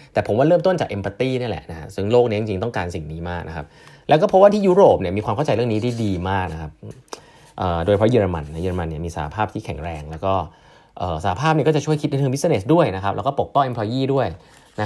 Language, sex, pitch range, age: Thai, male, 95-145 Hz, 30-49